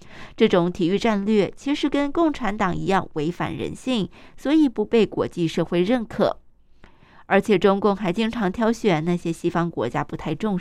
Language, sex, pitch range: Chinese, female, 175-240 Hz